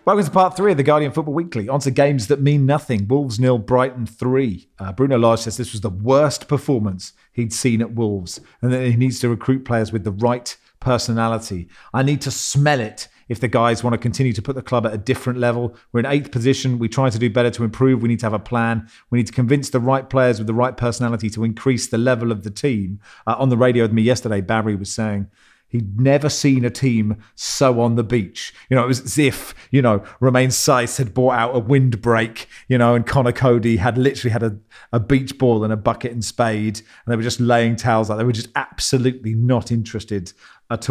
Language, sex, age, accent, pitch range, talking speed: English, male, 40-59, British, 110-130 Hz, 240 wpm